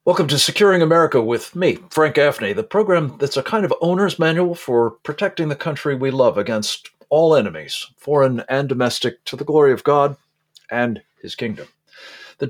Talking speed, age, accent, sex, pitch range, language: 180 wpm, 50-69, American, male, 120-160 Hz, English